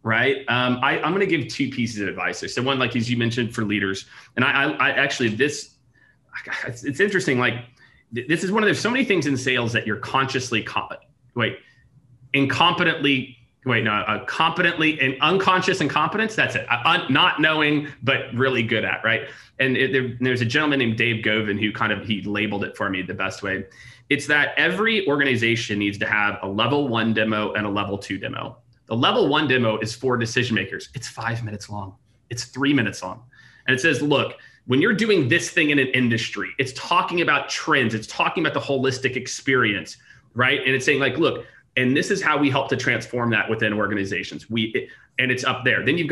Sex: male